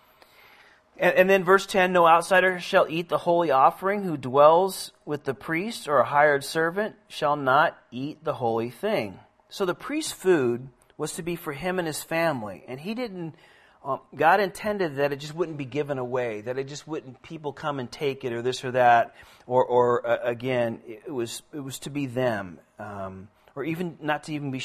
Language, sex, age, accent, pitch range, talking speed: Finnish, male, 40-59, American, 120-155 Hz, 200 wpm